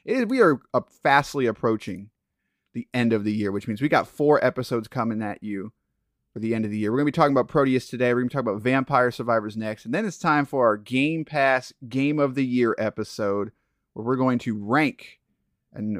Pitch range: 110-140 Hz